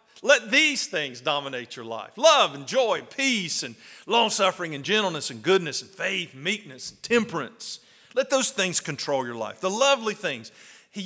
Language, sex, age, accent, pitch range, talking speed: English, male, 50-69, American, 135-195 Hz, 180 wpm